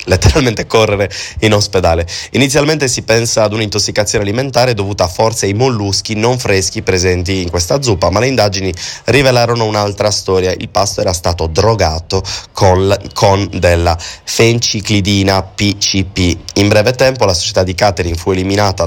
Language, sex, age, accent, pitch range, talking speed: Italian, male, 20-39, native, 95-115 Hz, 140 wpm